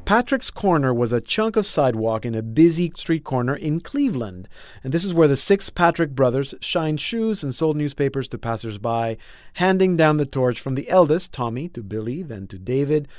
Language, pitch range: English, 120-180 Hz